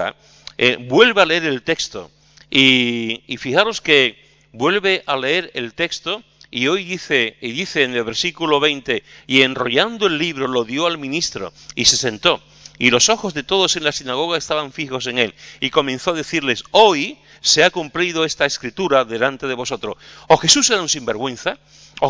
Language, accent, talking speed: Spanish, Spanish, 180 wpm